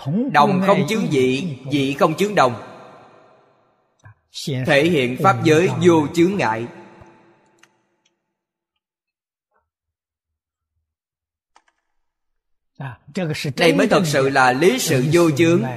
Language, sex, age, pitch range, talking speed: Vietnamese, male, 20-39, 130-185 Hz, 90 wpm